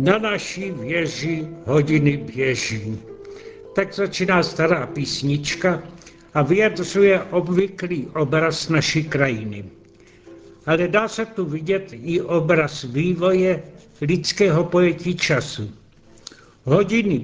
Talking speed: 95 wpm